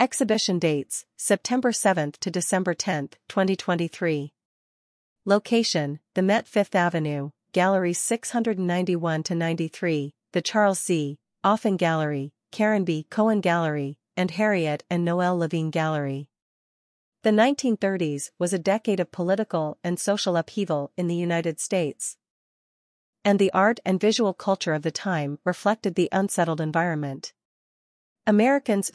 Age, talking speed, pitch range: 40-59, 120 wpm, 165-200 Hz